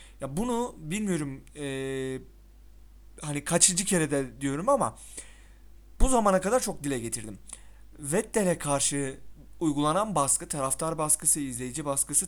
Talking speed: 115 wpm